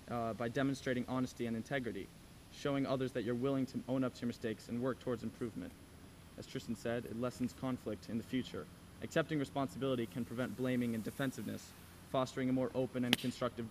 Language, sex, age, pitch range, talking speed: English, male, 20-39, 115-135 Hz, 190 wpm